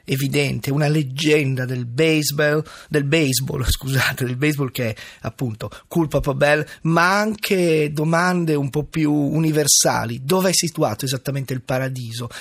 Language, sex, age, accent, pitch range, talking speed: Italian, male, 30-49, native, 140-170 Hz, 140 wpm